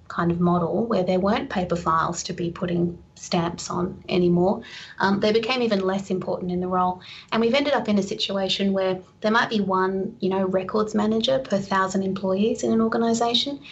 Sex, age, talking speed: female, 30-49, 195 wpm